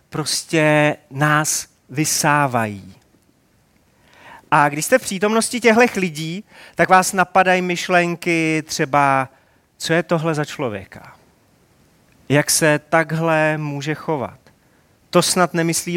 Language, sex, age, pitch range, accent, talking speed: Czech, male, 30-49, 140-185 Hz, native, 105 wpm